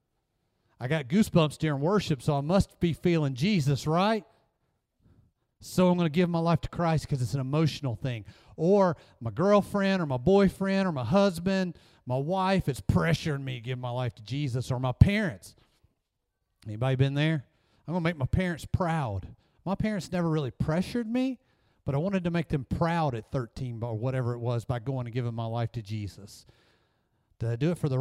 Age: 40-59